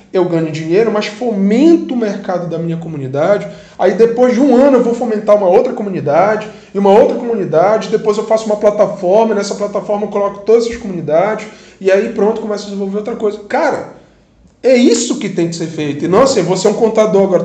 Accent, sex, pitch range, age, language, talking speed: Brazilian, male, 185-250 Hz, 20-39, Portuguese, 210 wpm